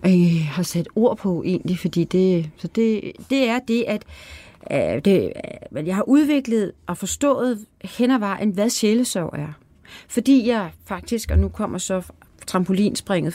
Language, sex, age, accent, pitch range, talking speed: Danish, female, 30-49, native, 175-210 Hz, 160 wpm